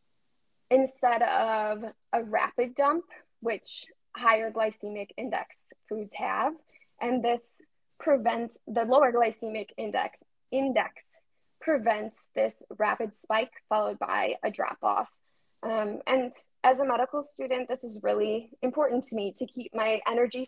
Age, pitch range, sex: 10-29, 225-270 Hz, female